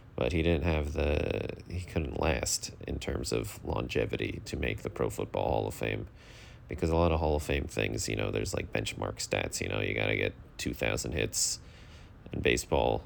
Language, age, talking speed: English, 30-49, 200 wpm